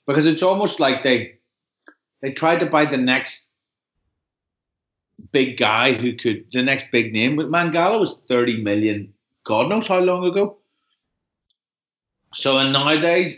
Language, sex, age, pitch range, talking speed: English, male, 30-49, 105-135 Hz, 145 wpm